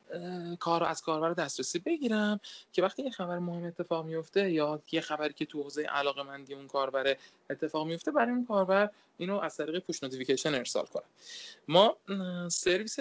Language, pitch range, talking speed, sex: Persian, 135-185 Hz, 160 wpm, male